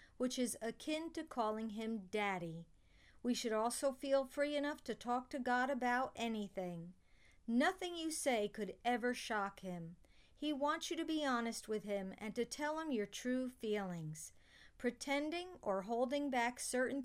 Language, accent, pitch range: English, American, 210-270 Hz